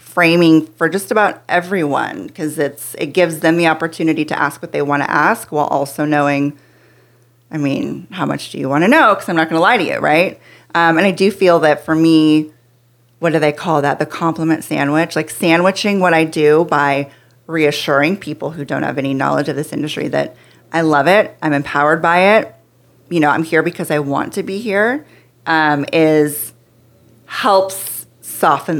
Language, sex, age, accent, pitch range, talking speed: English, female, 30-49, American, 145-175 Hz, 195 wpm